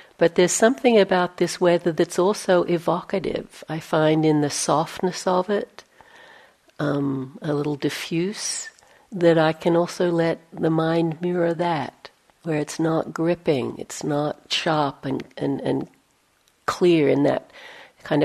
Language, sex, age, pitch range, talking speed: English, female, 60-79, 155-190 Hz, 140 wpm